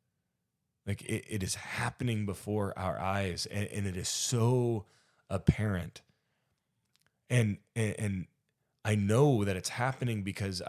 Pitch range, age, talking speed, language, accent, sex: 95-120 Hz, 20-39, 125 wpm, English, American, male